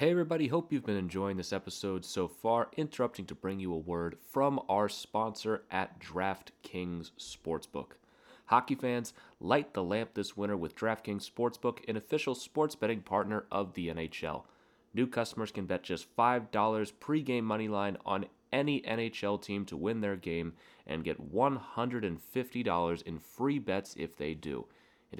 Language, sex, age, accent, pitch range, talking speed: English, male, 30-49, American, 95-120 Hz, 160 wpm